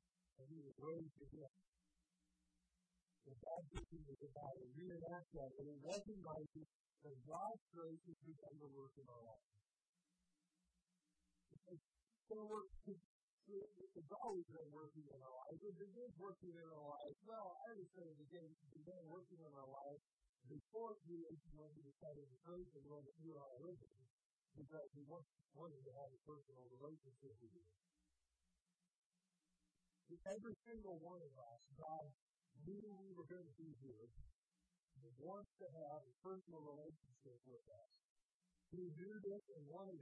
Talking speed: 155 wpm